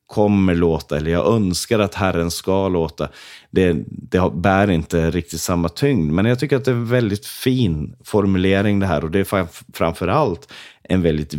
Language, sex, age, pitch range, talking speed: Swedish, male, 30-49, 80-105 Hz, 180 wpm